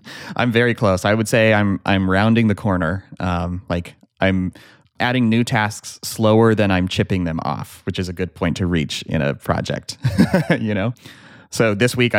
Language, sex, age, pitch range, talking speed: English, male, 30-49, 90-115 Hz, 185 wpm